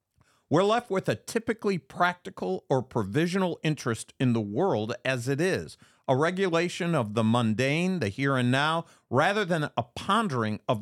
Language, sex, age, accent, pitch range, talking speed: English, male, 50-69, American, 120-185 Hz, 160 wpm